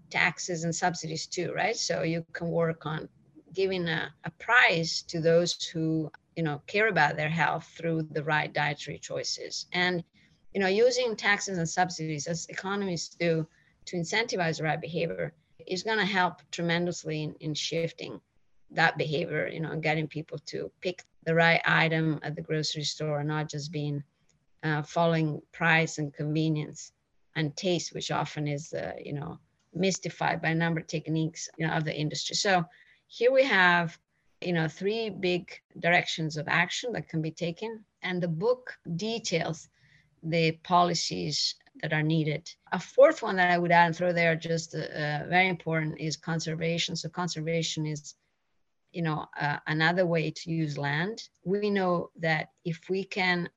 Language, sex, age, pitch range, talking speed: English, female, 30-49, 155-180 Hz, 170 wpm